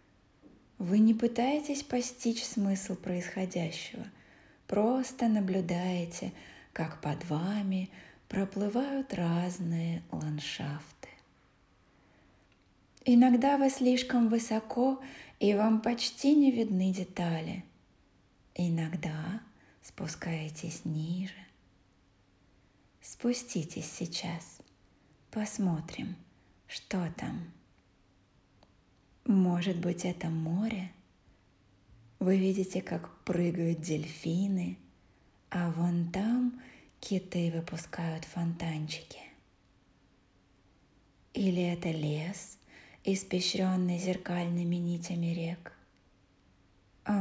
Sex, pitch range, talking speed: female, 155-195 Hz, 70 wpm